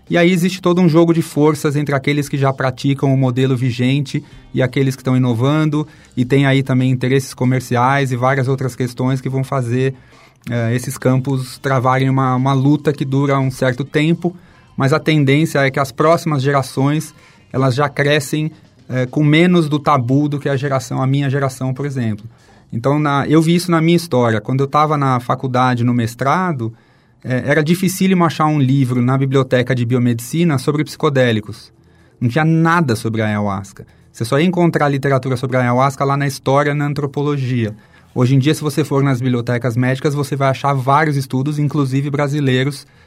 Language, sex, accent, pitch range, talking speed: Portuguese, male, Brazilian, 125-145 Hz, 185 wpm